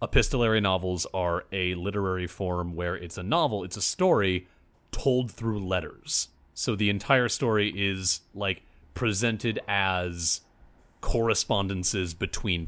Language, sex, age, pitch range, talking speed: English, male, 30-49, 90-110 Hz, 125 wpm